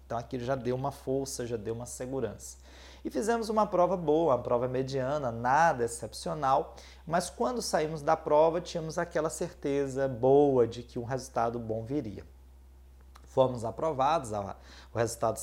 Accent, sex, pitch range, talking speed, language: Brazilian, male, 105-140 Hz, 150 wpm, Portuguese